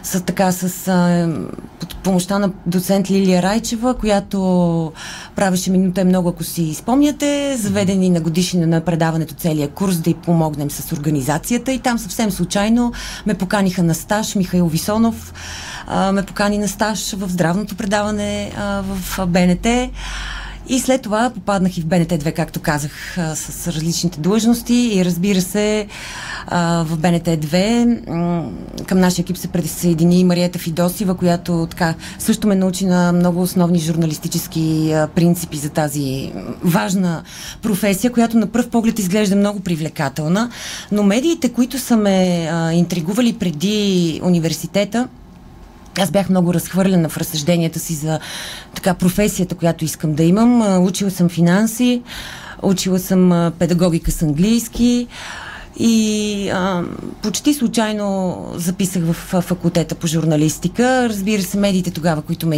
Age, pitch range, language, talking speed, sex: 30-49, 170-205 Hz, Bulgarian, 130 wpm, female